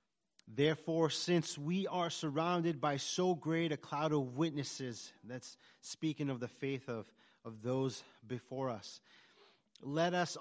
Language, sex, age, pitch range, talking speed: English, male, 30-49, 125-170 Hz, 140 wpm